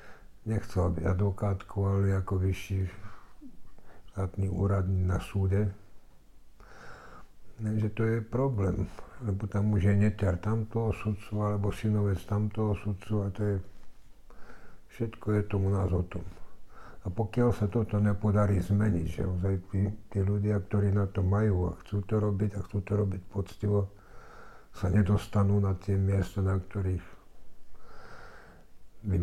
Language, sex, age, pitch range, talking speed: Slovak, male, 60-79, 90-105 Hz, 130 wpm